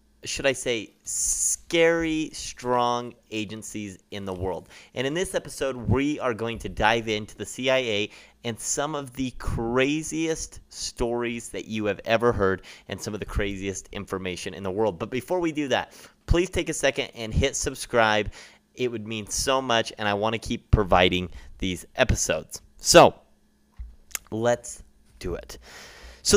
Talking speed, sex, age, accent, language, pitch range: 160 wpm, male, 30-49, American, English, 100-130 Hz